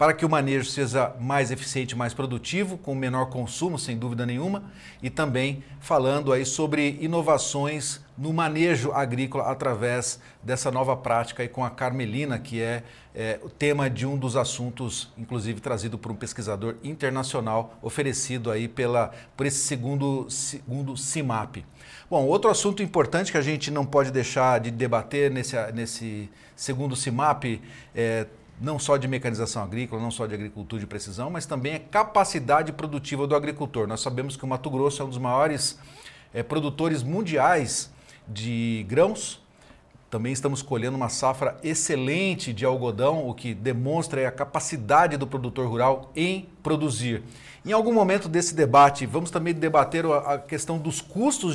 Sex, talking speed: male, 155 wpm